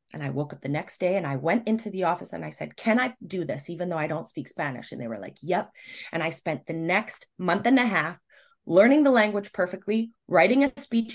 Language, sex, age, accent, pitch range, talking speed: English, female, 20-39, American, 190-260 Hz, 255 wpm